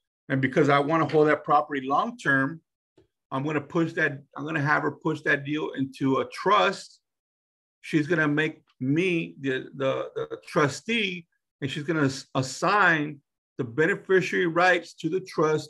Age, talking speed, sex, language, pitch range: 50-69, 175 wpm, male, English, 135-175 Hz